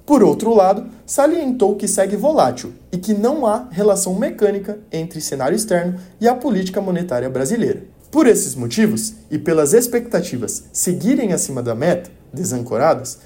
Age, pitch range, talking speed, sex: 20-39, 180-245 Hz, 145 wpm, male